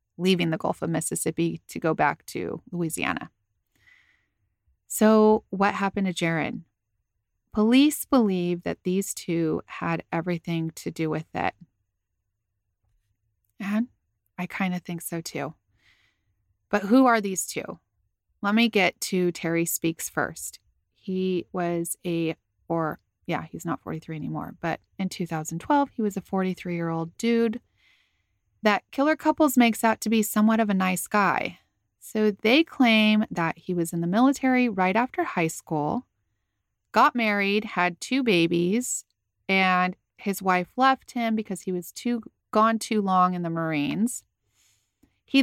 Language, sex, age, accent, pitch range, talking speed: English, female, 30-49, American, 165-220 Hz, 145 wpm